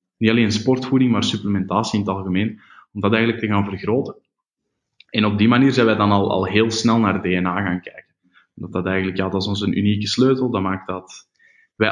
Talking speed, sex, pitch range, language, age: 215 wpm, male, 100-115 Hz, English, 20-39